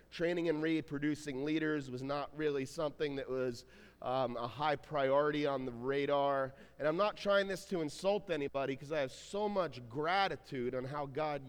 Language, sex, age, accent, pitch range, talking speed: English, male, 30-49, American, 145-190 Hz, 180 wpm